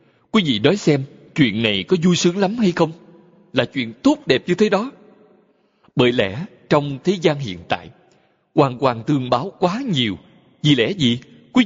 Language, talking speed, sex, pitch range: Vietnamese, 185 wpm, male, 130-195 Hz